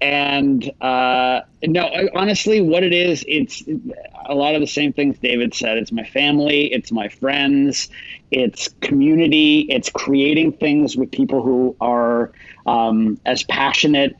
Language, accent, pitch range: English, American, 125-180 Hz